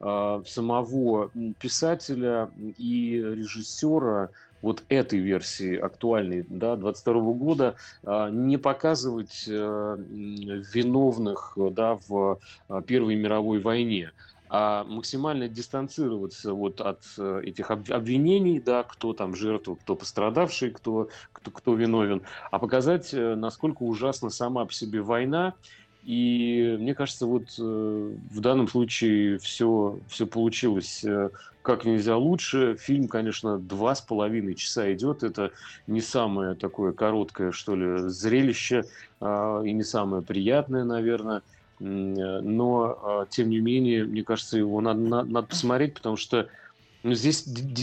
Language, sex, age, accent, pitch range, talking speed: Russian, male, 30-49, native, 105-125 Hz, 115 wpm